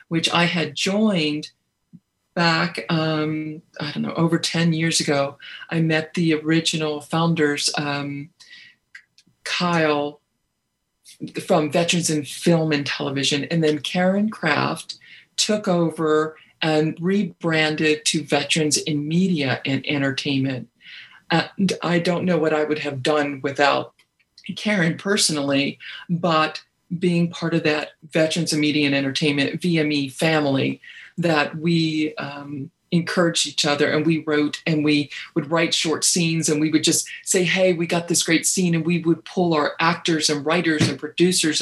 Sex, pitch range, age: female, 150-175 Hz, 40-59